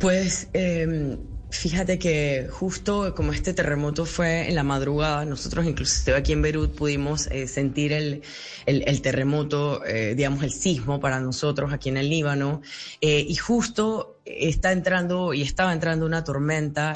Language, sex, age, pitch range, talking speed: Spanish, female, 10-29, 135-155 Hz, 155 wpm